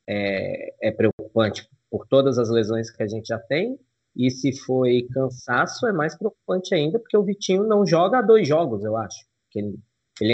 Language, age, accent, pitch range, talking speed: Portuguese, 20-39, Brazilian, 110-150 Hz, 180 wpm